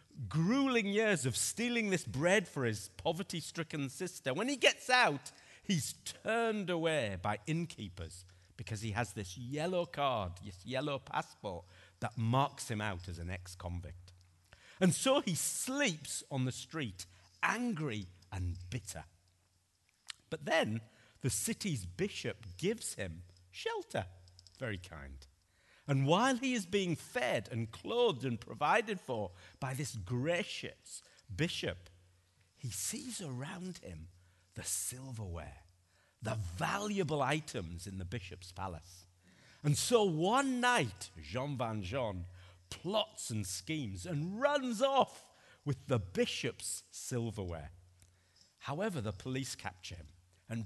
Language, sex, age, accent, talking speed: English, male, 50-69, British, 130 wpm